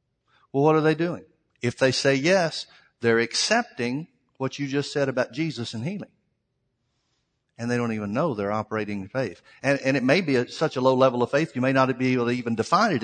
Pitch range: 120-145 Hz